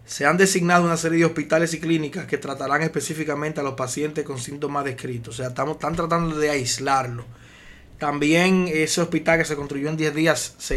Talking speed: 190 wpm